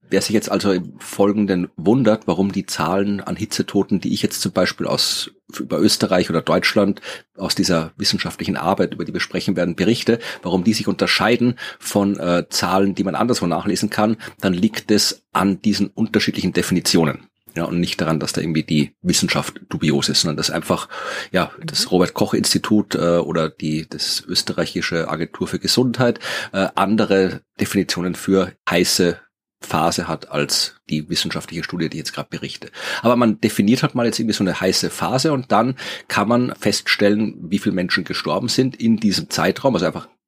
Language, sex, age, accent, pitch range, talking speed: German, male, 30-49, German, 95-110 Hz, 175 wpm